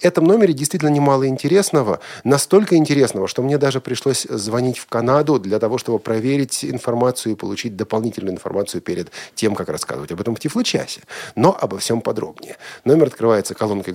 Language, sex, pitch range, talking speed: Russian, male, 105-145 Hz, 165 wpm